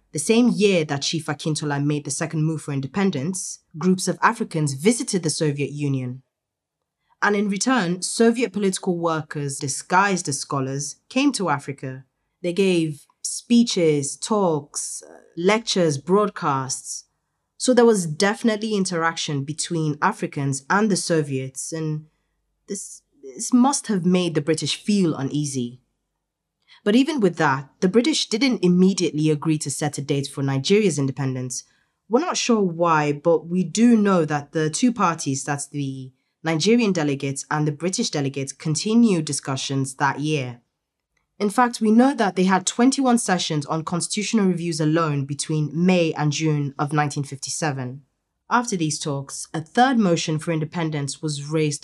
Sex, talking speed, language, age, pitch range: female, 145 wpm, English, 20-39, 145-195 Hz